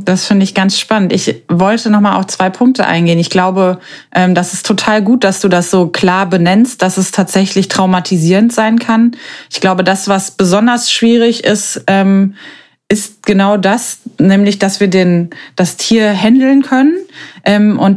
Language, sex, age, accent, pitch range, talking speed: German, female, 20-39, German, 185-215 Hz, 165 wpm